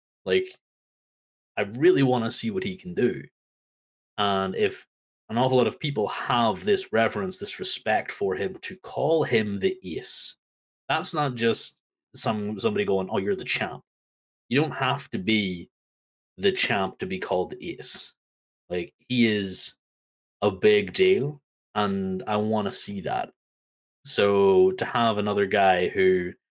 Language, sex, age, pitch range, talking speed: English, male, 20-39, 95-155 Hz, 155 wpm